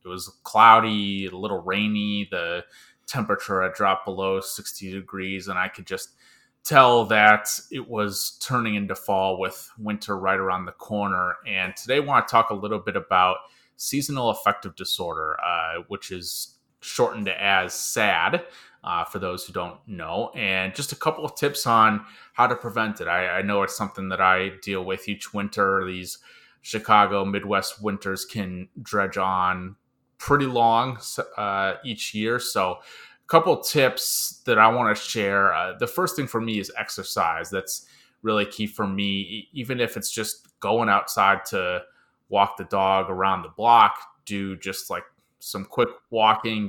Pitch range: 95-115 Hz